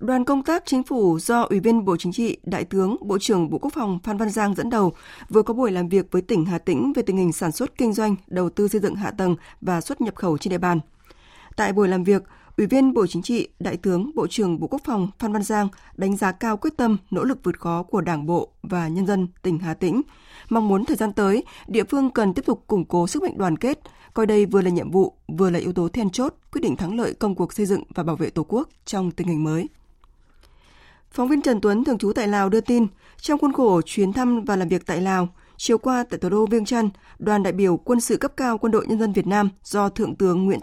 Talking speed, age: 265 wpm, 20-39